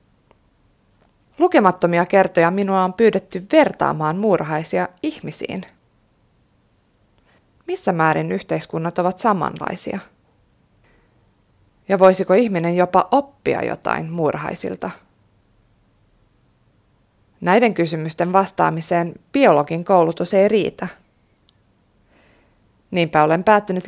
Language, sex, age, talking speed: Finnish, female, 20-39, 75 wpm